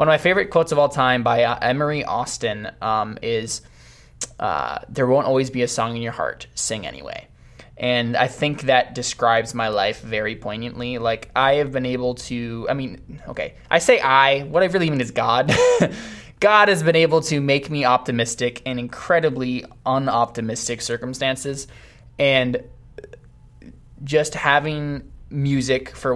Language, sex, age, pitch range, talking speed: English, male, 20-39, 120-135 Hz, 160 wpm